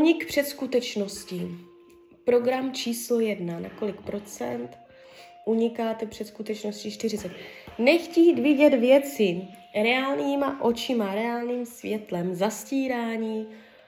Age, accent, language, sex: 20-39, native, Czech, female